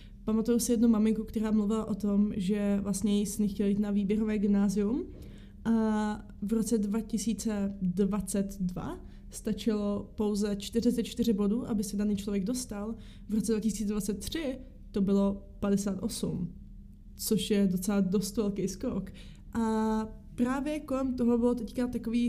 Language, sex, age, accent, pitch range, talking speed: Czech, female, 20-39, native, 205-230 Hz, 130 wpm